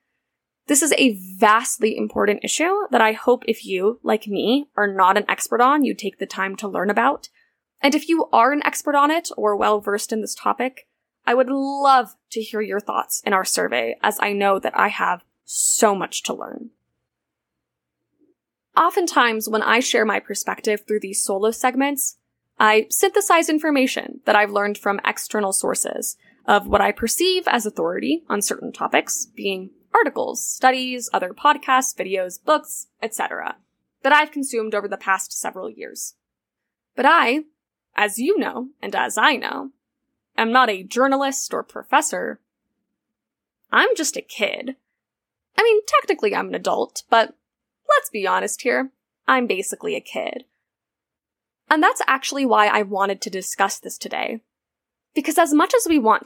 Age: 10-29